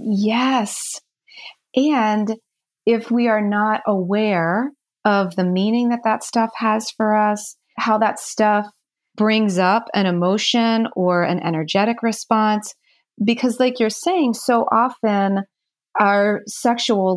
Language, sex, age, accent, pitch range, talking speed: English, female, 30-49, American, 200-240 Hz, 120 wpm